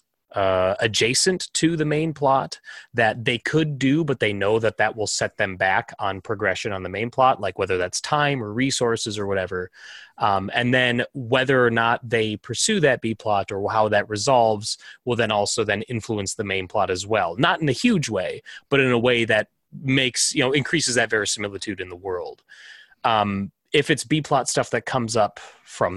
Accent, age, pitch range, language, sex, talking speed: American, 30-49, 105-135 Hz, English, male, 200 wpm